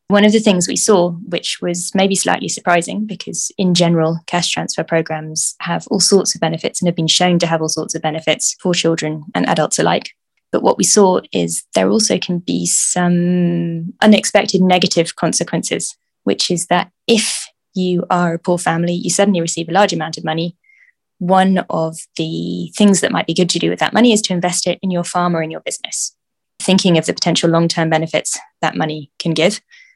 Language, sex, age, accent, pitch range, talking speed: English, female, 20-39, British, 165-190 Hz, 200 wpm